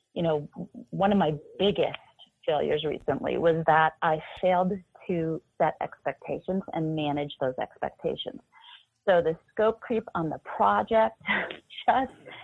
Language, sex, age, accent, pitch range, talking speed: English, female, 40-59, American, 165-210 Hz, 130 wpm